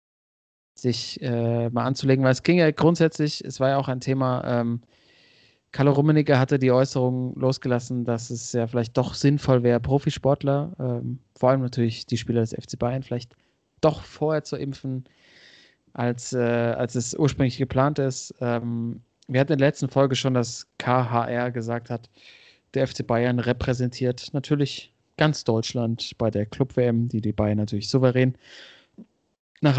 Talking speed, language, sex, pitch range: 160 wpm, German, male, 120-140 Hz